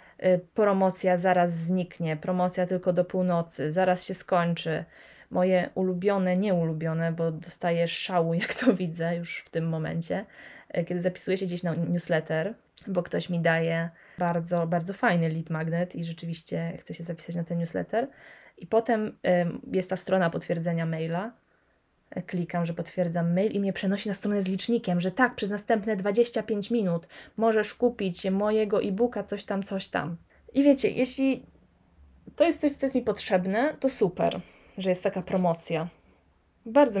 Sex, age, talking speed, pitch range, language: female, 20-39, 155 wpm, 170-210 Hz, Polish